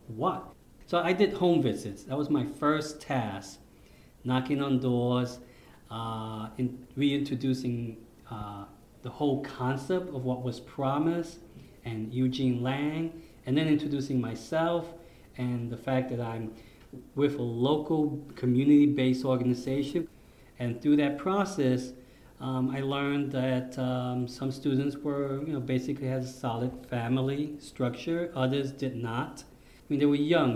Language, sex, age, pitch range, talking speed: English, male, 40-59, 120-145 Hz, 135 wpm